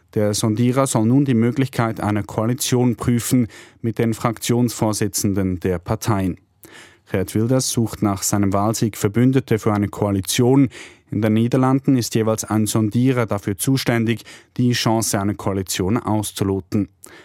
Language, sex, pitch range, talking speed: German, male, 105-120 Hz, 130 wpm